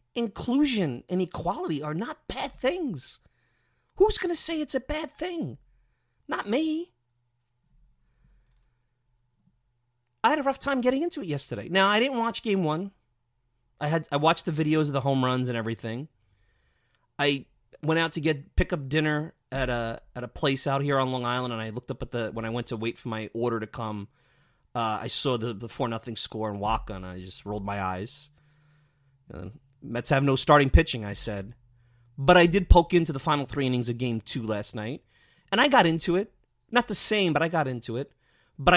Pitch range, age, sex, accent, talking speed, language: 120-165 Hz, 30-49, male, American, 200 wpm, English